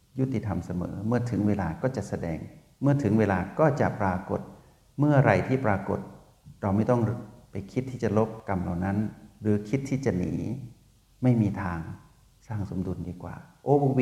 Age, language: 60-79, Thai